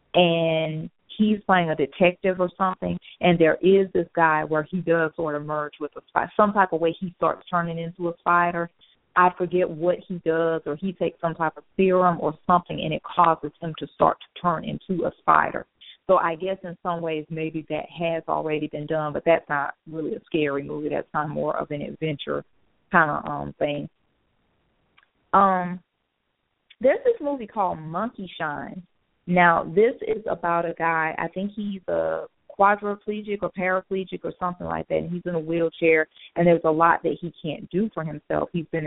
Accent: American